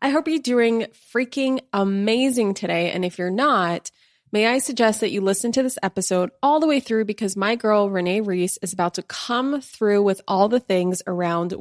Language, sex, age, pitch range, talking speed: English, female, 20-39, 185-235 Hz, 200 wpm